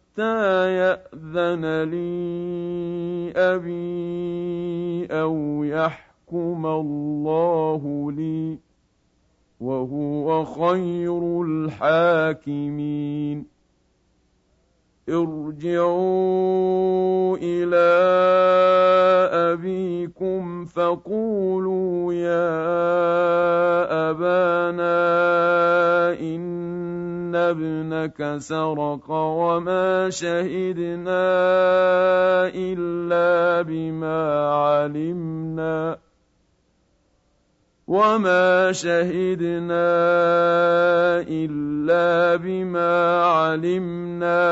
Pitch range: 160-175 Hz